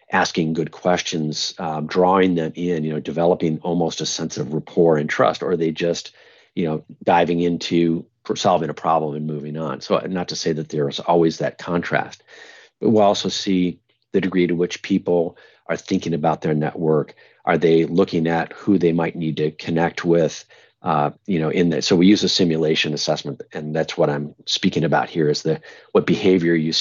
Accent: American